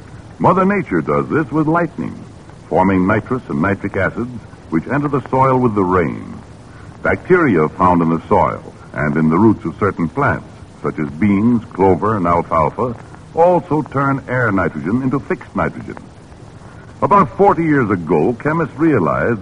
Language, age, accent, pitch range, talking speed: English, 60-79, American, 95-150 Hz, 150 wpm